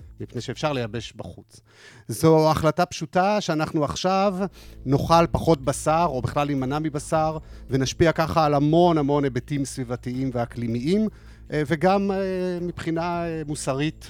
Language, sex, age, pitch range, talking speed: Hebrew, male, 40-59, 120-170 Hz, 115 wpm